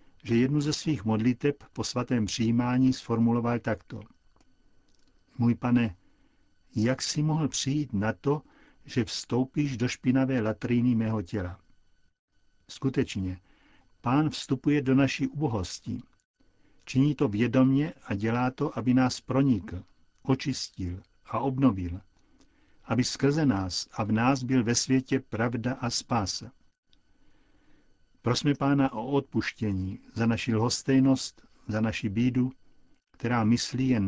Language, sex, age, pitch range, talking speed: Czech, male, 60-79, 110-135 Hz, 120 wpm